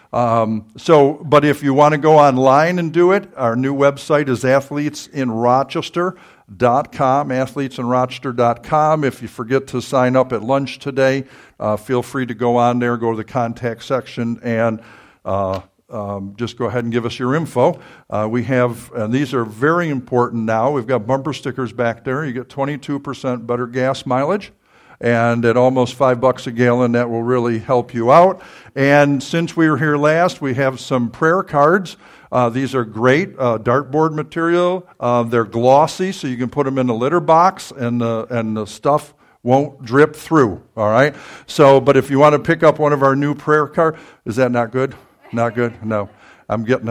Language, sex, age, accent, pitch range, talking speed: English, male, 50-69, American, 120-150 Hz, 185 wpm